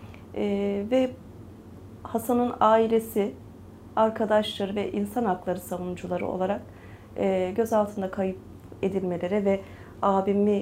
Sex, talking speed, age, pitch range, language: female, 90 wpm, 30-49, 165-230 Hz, Turkish